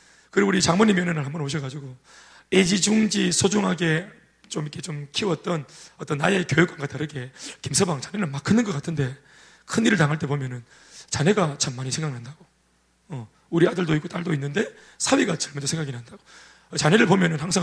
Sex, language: male, Korean